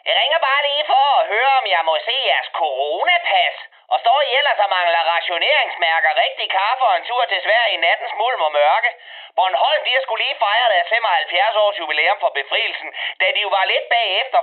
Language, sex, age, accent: Danish, male, 30-49, native